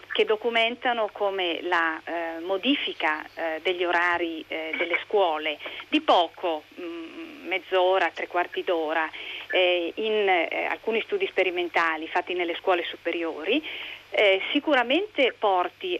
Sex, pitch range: female, 175-280 Hz